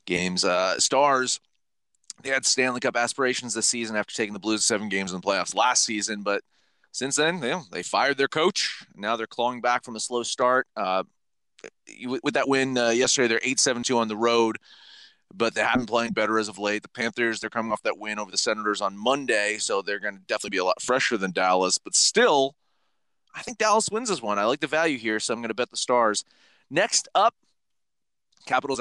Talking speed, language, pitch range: 210 wpm, English, 105-140 Hz